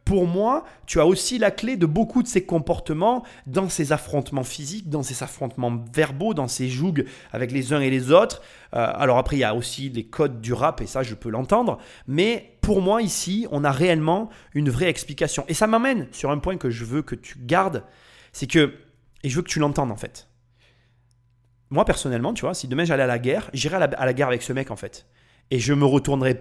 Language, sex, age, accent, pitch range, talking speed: French, male, 30-49, French, 125-180 Hz, 230 wpm